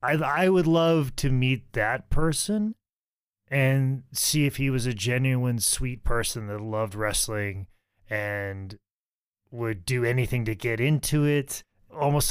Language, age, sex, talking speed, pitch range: English, 30-49, male, 140 wpm, 100-130 Hz